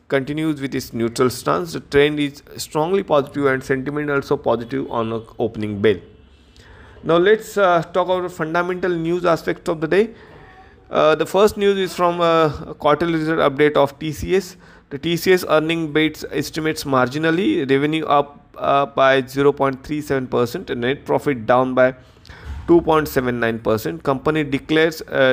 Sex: male